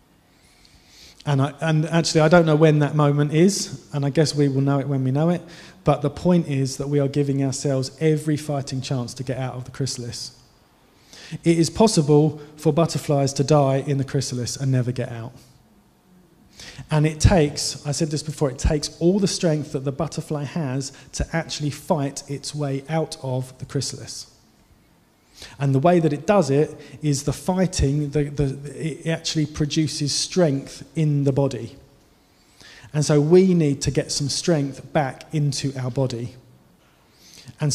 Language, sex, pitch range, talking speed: English, male, 135-155 Hz, 170 wpm